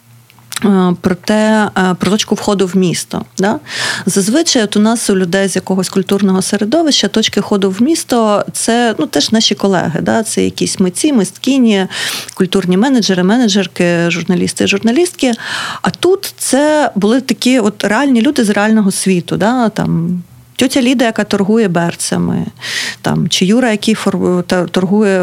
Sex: female